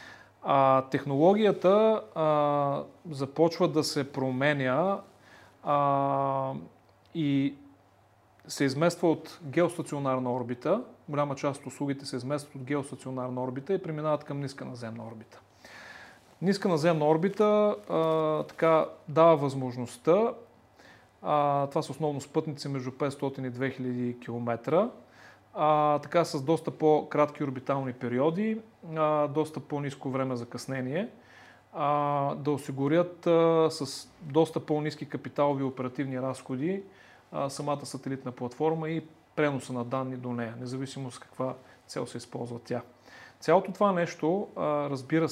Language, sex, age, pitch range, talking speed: Bulgarian, male, 30-49, 130-155 Hz, 115 wpm